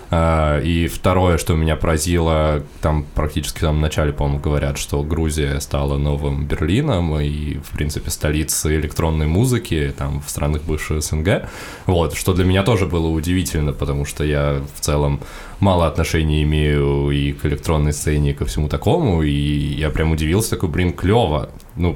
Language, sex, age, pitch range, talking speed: Russian, male, 20-39, 75-90 Hz, 160 wpm